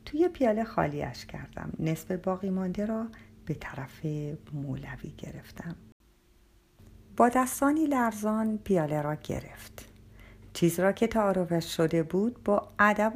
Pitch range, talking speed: 155-230 Hz, 120 wpm